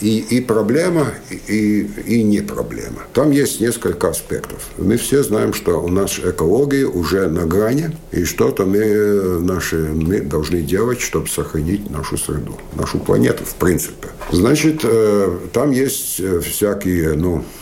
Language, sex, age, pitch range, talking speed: Russian, male, 60-79, 80-105 Hz, 140 wpm